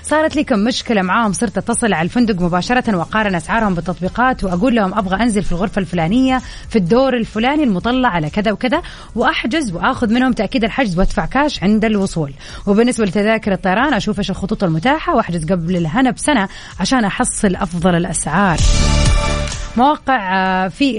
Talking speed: 150 wpm